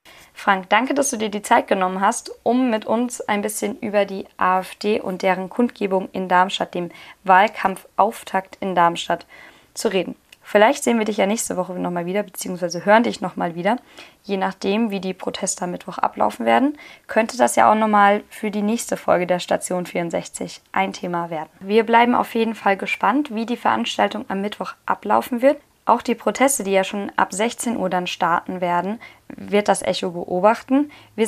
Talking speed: 185 wpm